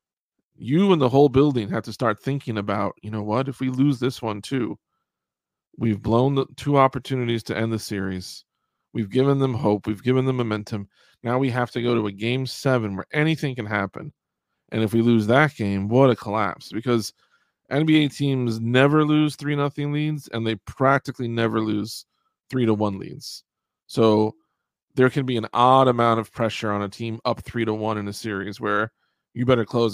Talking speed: 195 wpm